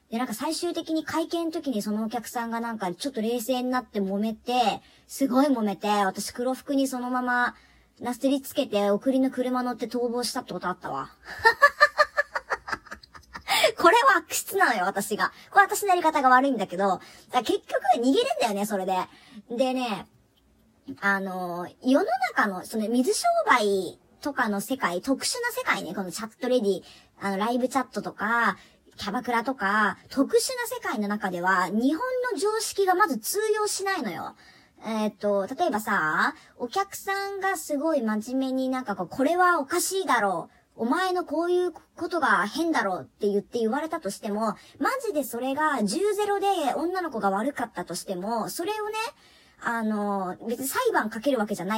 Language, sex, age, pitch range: Japanese, male, 40-59, 210-335 Hz